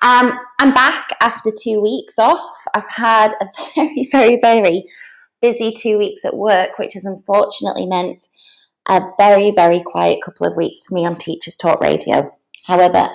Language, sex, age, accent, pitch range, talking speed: English, female, 20-39, British, 180-240 Hz, 165 wpm